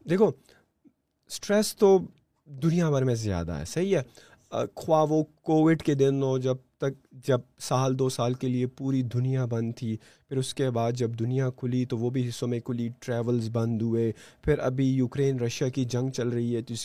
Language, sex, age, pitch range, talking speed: Urdu, male, 20-39, 125-155 Hz, 200 wpm